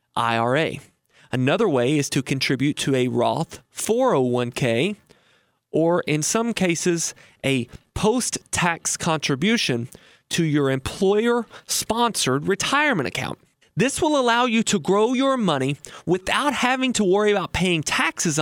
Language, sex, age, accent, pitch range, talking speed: English, male, 30-49, American, 145-225 Hz, 120 wpm